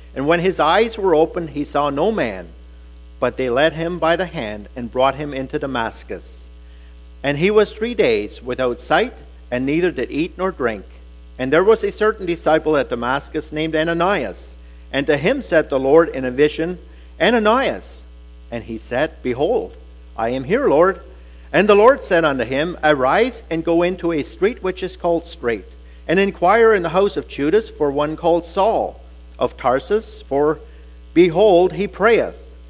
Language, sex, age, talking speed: English, male, 50-69, 175 wpm